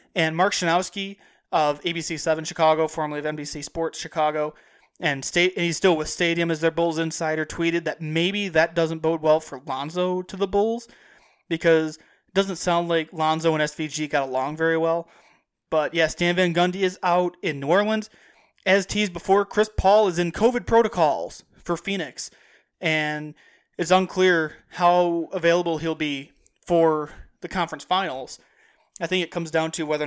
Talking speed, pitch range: 170 wpm, 160-185 Hz